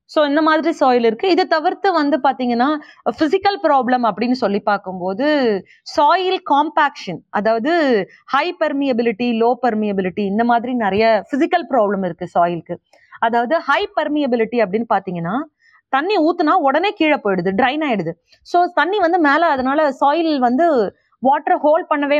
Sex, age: female, 20-39